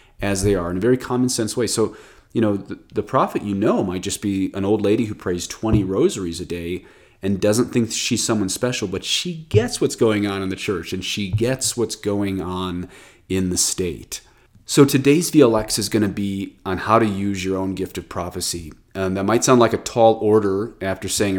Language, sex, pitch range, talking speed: English, male, 95-110 Hz, 220 wpm